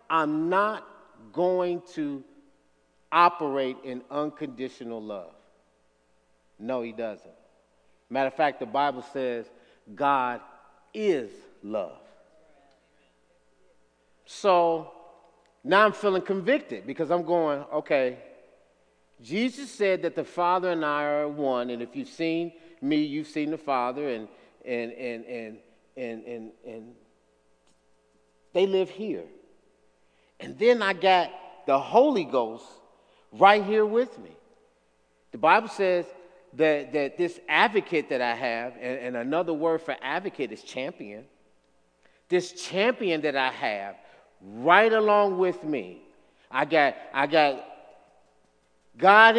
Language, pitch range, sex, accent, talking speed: English, 115-180 Hz, male, American, 120 wpm